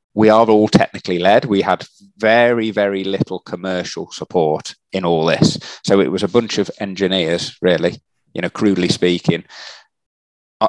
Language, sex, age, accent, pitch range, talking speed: English, male, 30-49, British, 85-105 Hz, 155 wpm